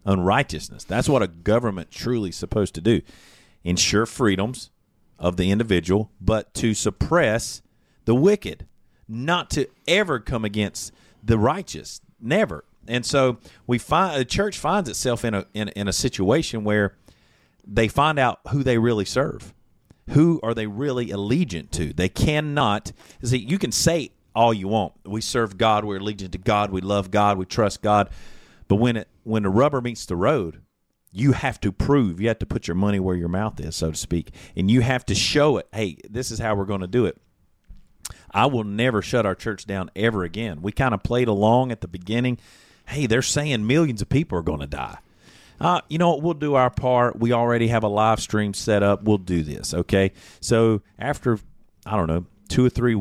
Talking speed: 195 wpm